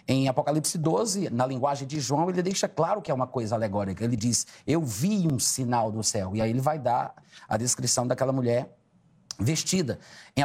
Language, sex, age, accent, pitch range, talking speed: Portuguese, male, 30-49, Brazilian, 120-165 Hz, 195 wpm